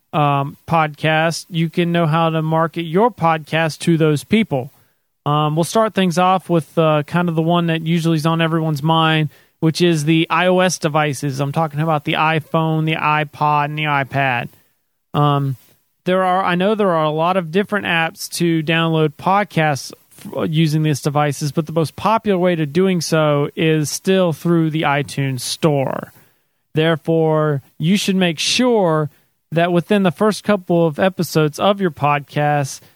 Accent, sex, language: American, male, English